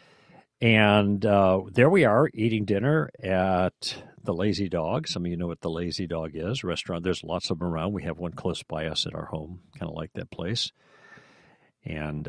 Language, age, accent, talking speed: English, 60-79, American, 200 wpm